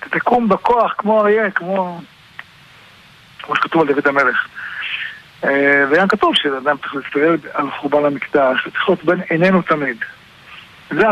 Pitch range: 145-190 Hz